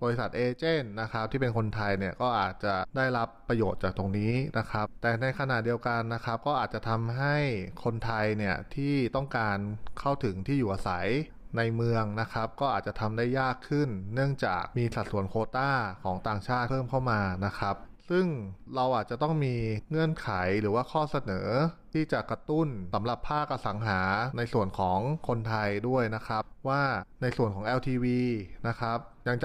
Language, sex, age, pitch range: Thai, male, 20-39, 105-130 Hz